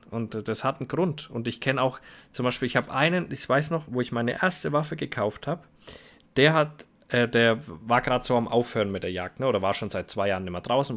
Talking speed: 250 wpm